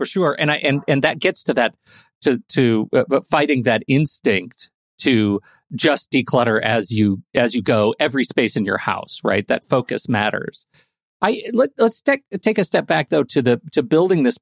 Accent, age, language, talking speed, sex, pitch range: American, 40-59, English, 190 wpm, male, 125-180 Hz